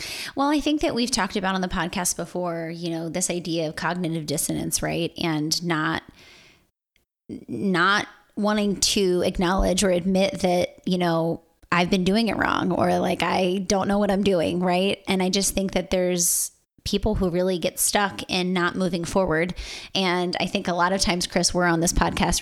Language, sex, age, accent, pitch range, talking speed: English, female, 20-39, American, 165-190 Hz, 190 wpm